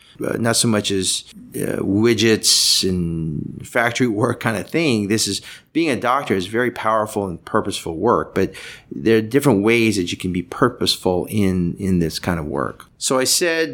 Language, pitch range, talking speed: English, 95-115 Hz, 190 wpm